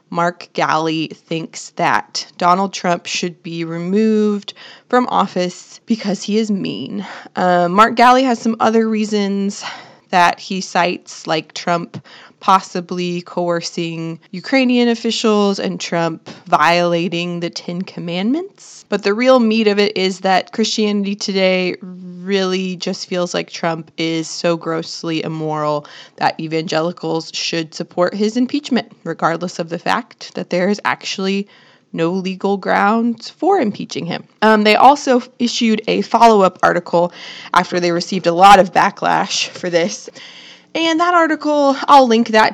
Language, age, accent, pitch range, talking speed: English, 20-39, American, 175-225 Hz, 140 wpm